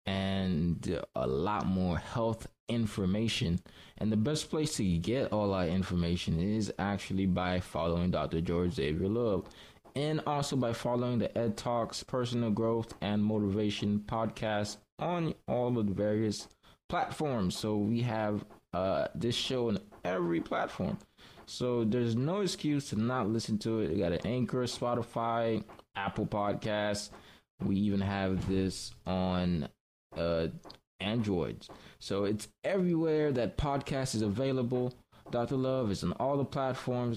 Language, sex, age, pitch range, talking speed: English, male, 20-39, 95-120 Hz, 140 wpm